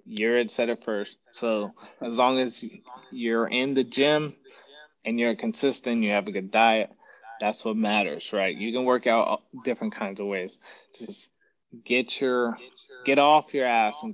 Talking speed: 165 wpm